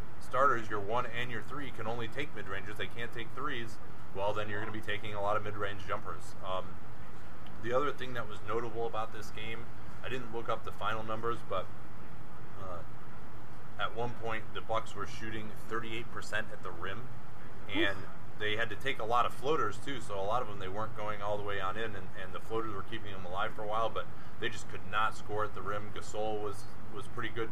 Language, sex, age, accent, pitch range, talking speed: English, male, 30-49, American, 100-115 Hz, 230 wpm